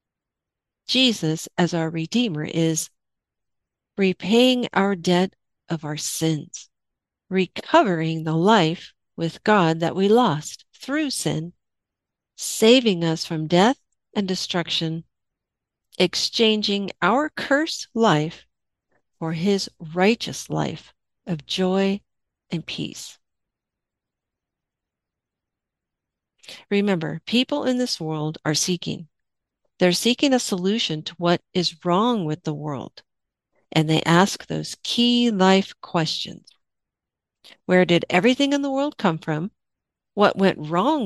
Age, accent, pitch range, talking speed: 50-69, American, 165-220 Hz, 110 wpm